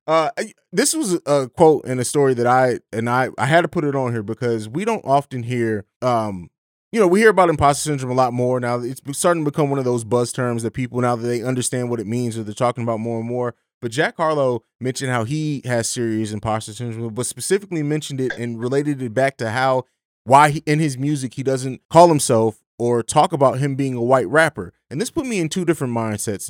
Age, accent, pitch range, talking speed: 20-39, American, 120-150 Hz, 240 wpm